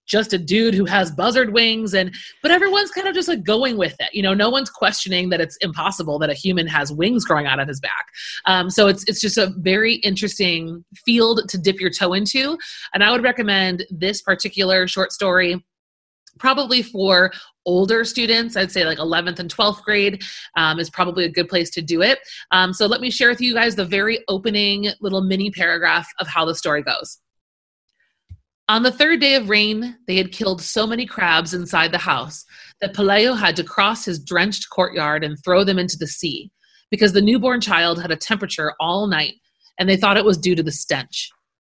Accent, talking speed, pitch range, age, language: American, 205 wpm, 170-210 Hz, 30-49, English